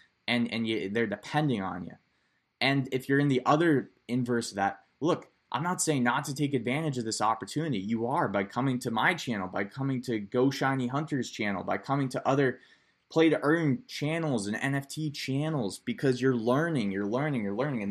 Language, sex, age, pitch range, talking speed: English, male, 20-39, 105-130 Hz, 200 wpm